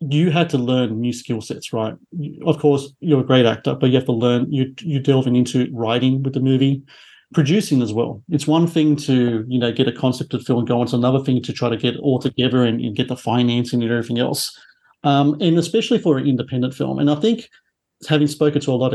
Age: 40-59